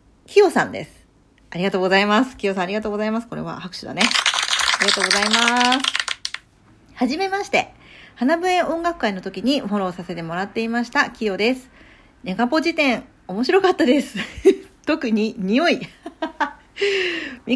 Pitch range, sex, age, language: 185-295 Hz, female, 40-59, Japanese